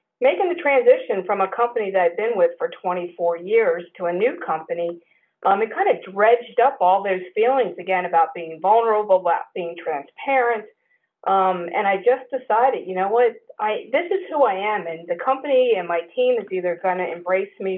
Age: 50-69